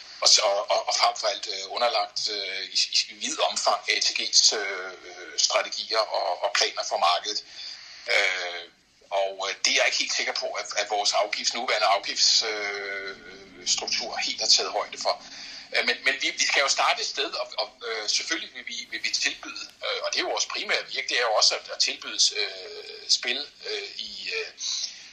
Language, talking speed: Danish, 180 wpm